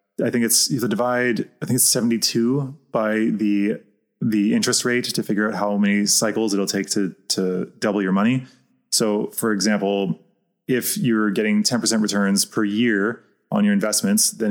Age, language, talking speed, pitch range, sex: 20-39, English, 175 wpm, 100-120 Hz, male